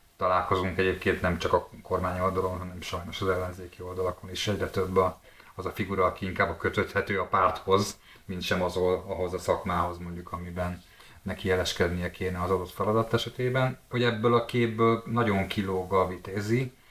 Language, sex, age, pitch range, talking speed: Hungarian, male, 30-49, 90-105 Hz, 165 wpm